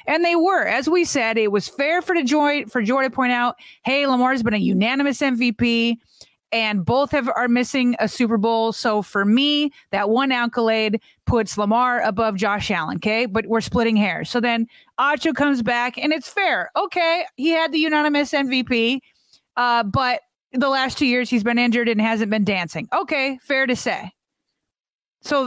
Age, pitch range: 30-49, 235-320 Hz